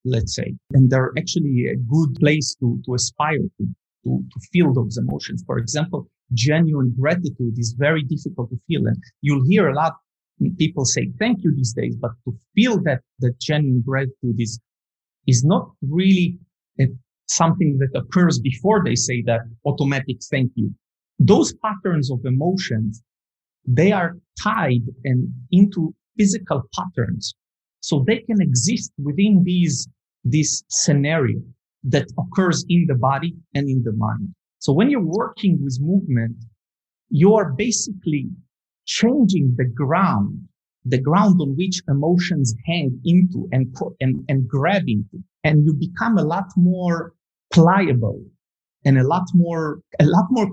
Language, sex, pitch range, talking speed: English, male, 125-175 Hz, 150 wpm